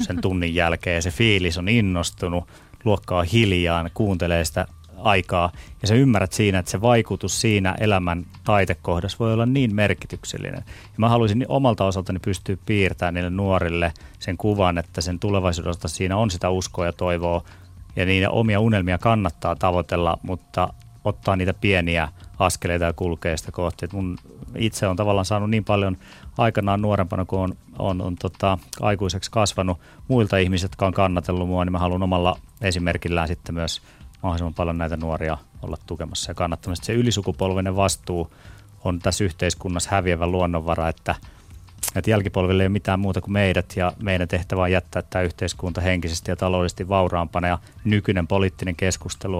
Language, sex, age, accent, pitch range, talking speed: Finnish, male, 30-49, native, 85-100 Hz, 155 wpm